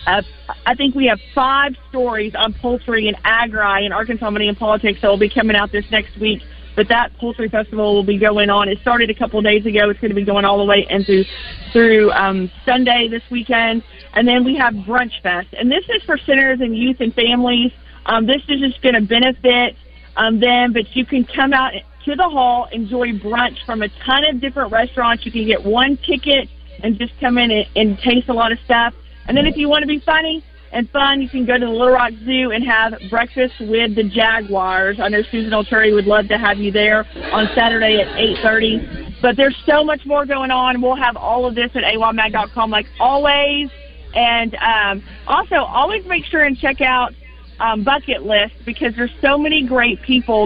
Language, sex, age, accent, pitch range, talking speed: English, female, 40-59, American, 215-255 Hz, 215 wpm